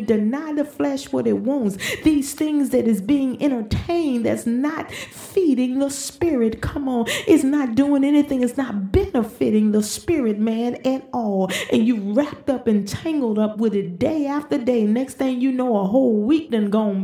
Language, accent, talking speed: English, American, 185 wpm